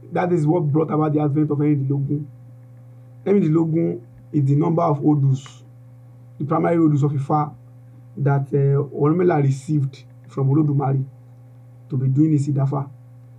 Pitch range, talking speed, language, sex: 125-160 Hz, 150 wpm, English, male